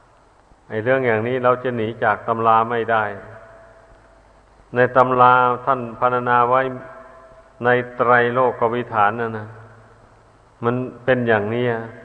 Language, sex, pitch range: Thai, male, 110-125 Hz